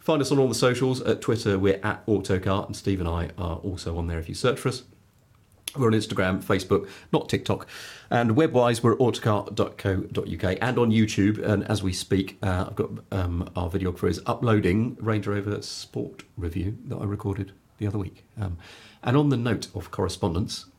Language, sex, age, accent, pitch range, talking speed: English, male, 40-59, British, 95-115 Hz, 195 wpm